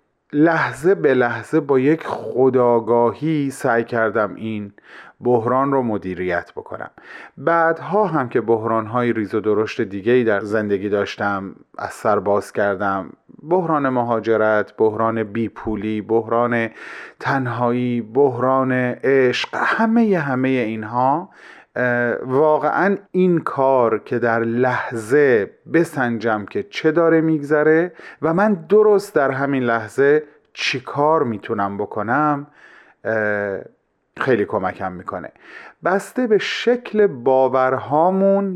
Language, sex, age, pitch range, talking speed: Persian, male, 30-49, 110-150 Hz, 105 wpm